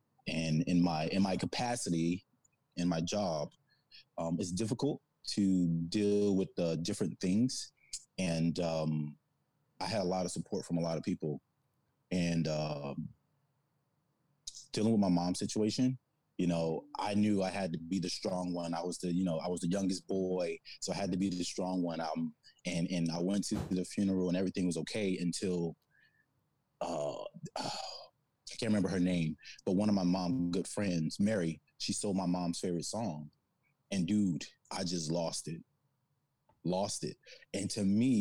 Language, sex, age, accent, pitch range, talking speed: English, male, 20-39, American, 85-105 Hz, 175 wpm